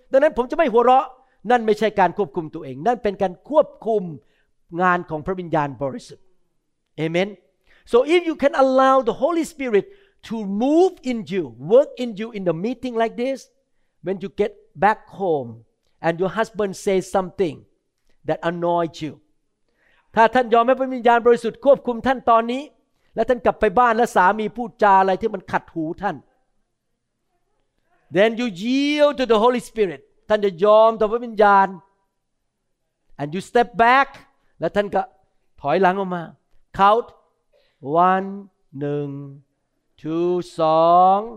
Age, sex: 50-69, male